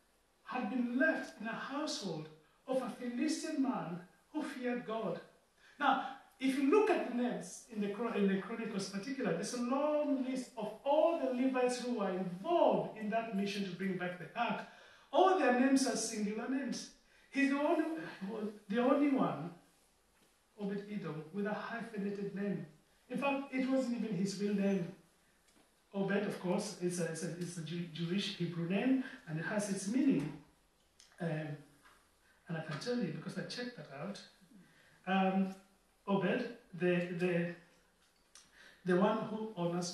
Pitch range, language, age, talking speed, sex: 180-250 Hz, English, 40-59, 155 wpm, male